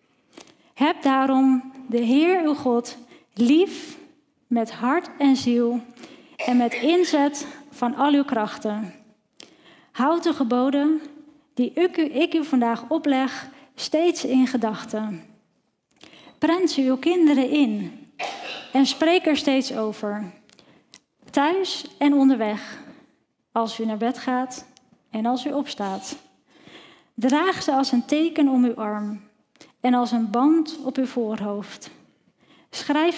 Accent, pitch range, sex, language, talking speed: Dutch, 235-295 Hz, female, Dutch, 125 wpm